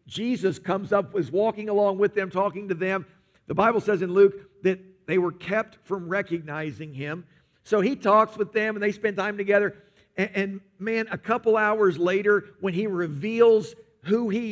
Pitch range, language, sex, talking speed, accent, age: 170-220 Hz, English, male, 185 wpm, American, 50-69